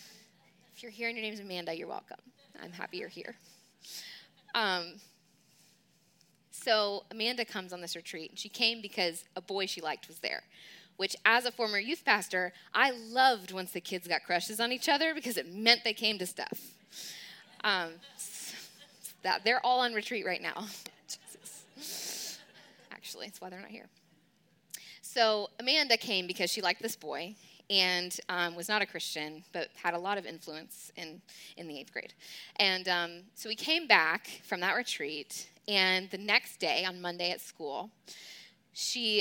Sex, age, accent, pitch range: female, 10-29, American, 180-230 Hz